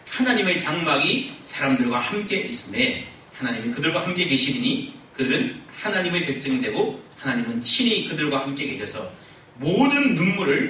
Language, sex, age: Korean, male, 40-59